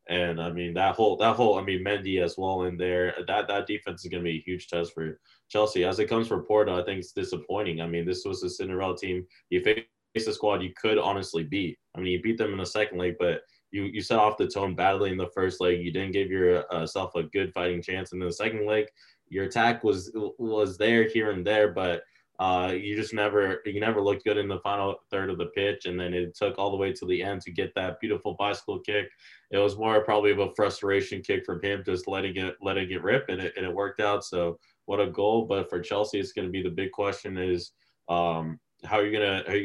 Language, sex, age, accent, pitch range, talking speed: English, male, 20-39, American, 90-105 Hz, 250 wpm